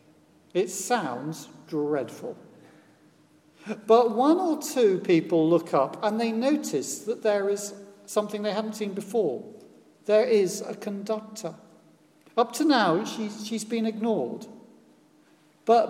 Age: 50-69